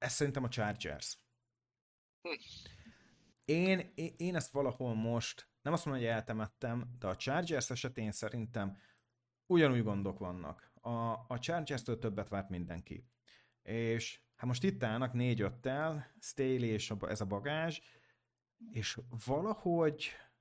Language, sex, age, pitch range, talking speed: Hungarian, male, 30-49, 110-140 Hz, 130 wpm